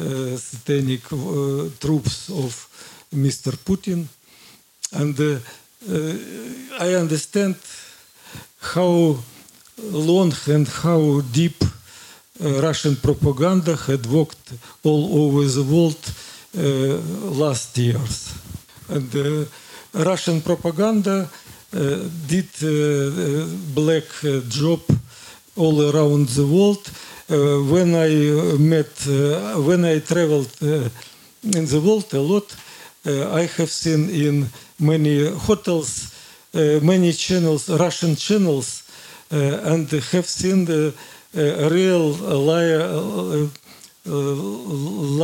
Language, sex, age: Slovak, male, 50-69